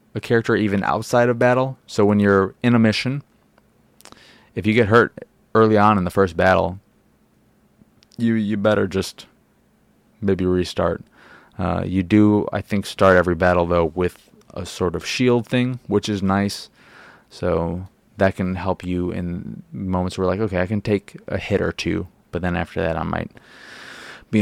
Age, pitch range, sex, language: 20-39, 95-110 Hz, male, English